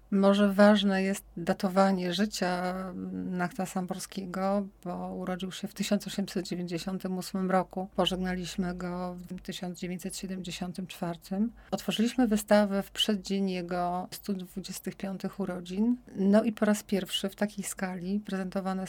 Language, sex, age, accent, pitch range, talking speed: Polish, female, 40-59, native, 185-200 Hz, 105 wpm